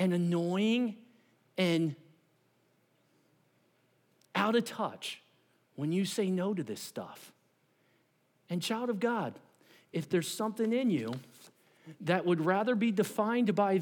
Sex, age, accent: male, 40-59, American